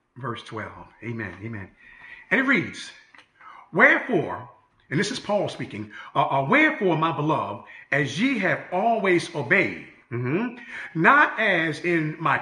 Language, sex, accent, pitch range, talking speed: English, male, American, 145-200 Hz, 120 wpm